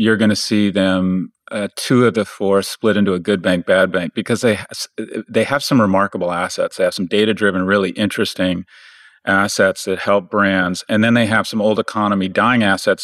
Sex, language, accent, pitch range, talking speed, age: male, English, American, 95-110 Hz, 205 wpm, 40-59